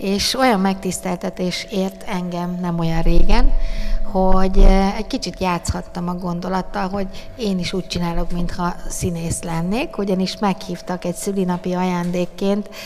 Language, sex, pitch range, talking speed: Hungarian, female, 175-200 Hz, 125 wpm